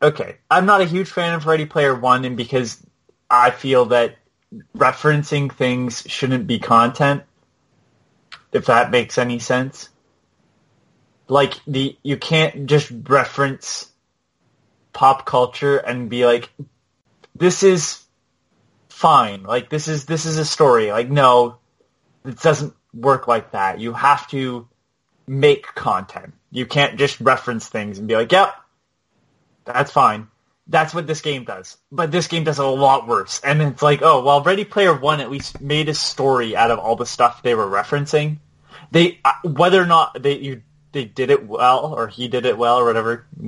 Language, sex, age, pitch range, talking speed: English, male, 20-39, 125-150 Hz, 170 wpm